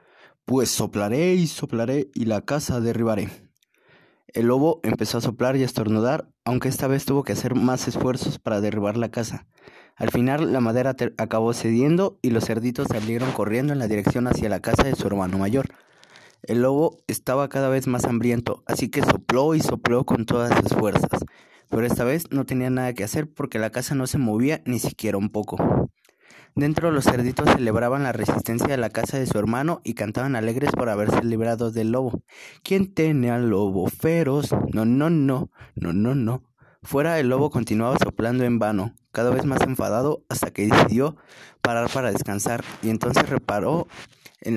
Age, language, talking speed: 20-39, Spanish, 180 wpm